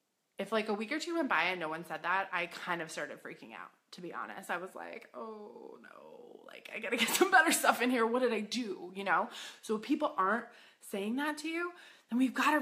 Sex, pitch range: female, 180-255 Hz